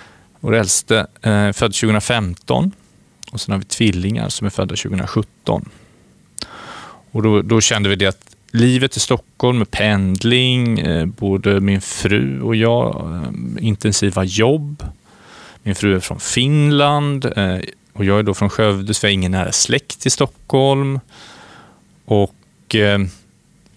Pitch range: 105-125 Hz